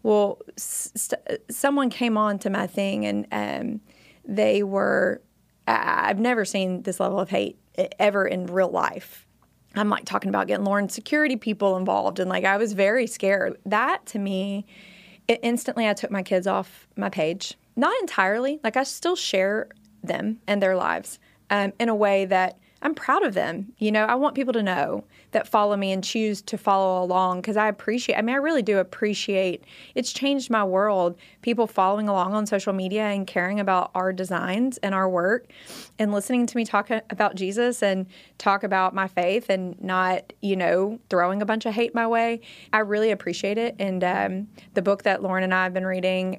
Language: English